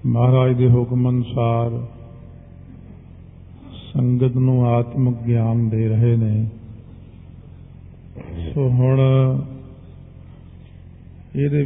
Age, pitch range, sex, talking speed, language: 50-69, 115-135 Hz, male, 70 wpm, Punjabi